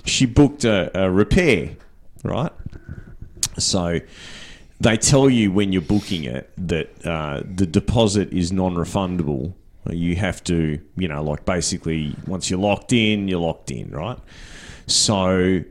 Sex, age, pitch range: male, 30-49, 85-115 Hz